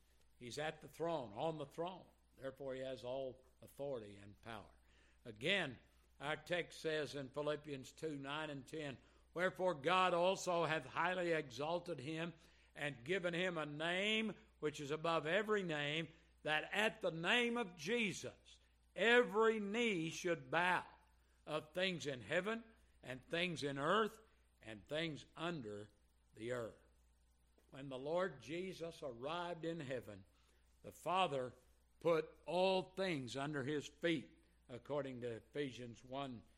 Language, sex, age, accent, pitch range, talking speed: English, male, 60-79, American, 120-180 Hz, 135 wpm